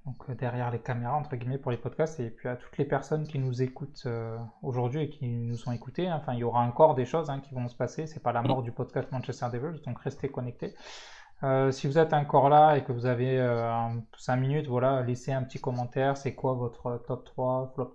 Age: 20-39